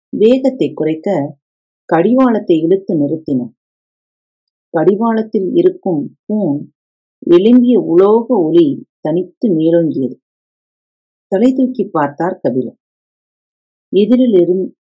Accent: native